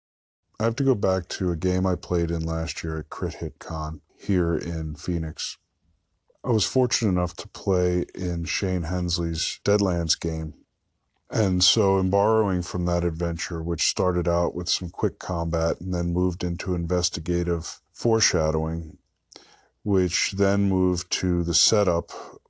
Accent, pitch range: American, 85-95 Hz